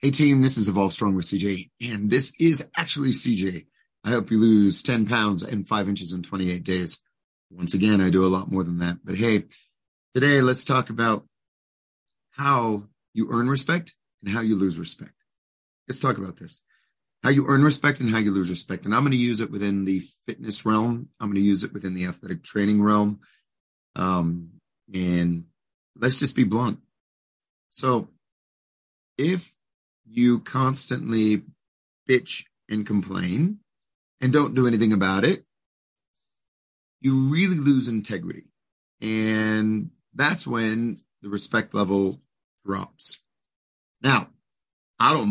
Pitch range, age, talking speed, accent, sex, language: 95-125 Hz, 30-49, 150 wpm, American, male, English